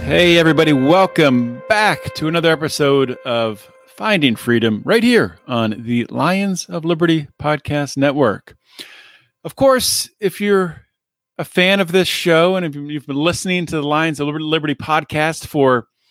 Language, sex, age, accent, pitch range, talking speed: English, male, 40-59, American, 130-175 Hz, 150 wpm